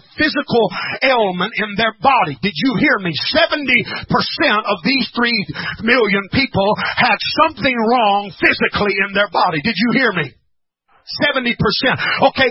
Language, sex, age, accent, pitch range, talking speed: English, male, 40-59, American, 210-265 Hz, 135 wpm